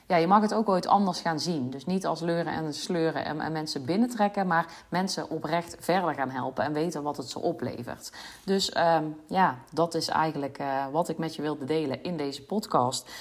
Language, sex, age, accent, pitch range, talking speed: Dutch, female, 30-49, Dutch, 160-200 Hz, 210 wpm